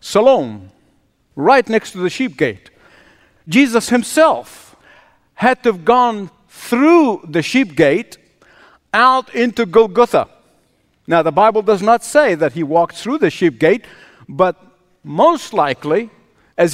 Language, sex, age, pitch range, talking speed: English, male, 50-69, 175-255 Hz, 135 wpm